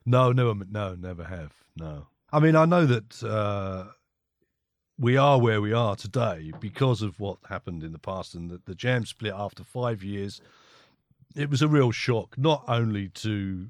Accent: British